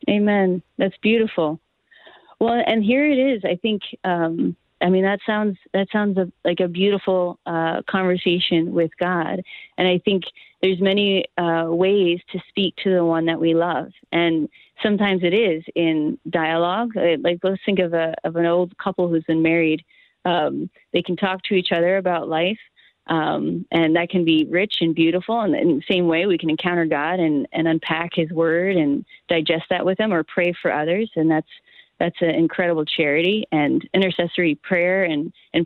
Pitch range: 165-195 Hz